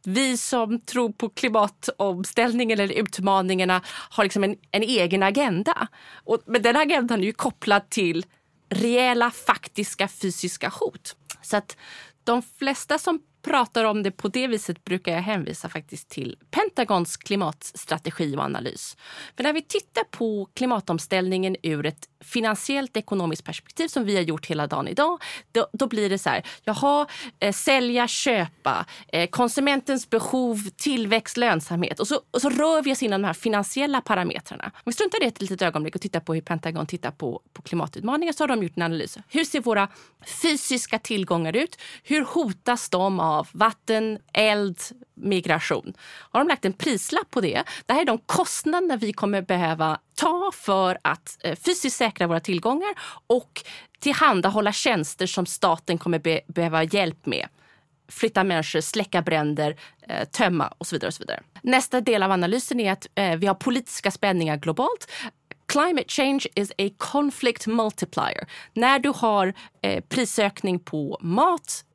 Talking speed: 160 wpm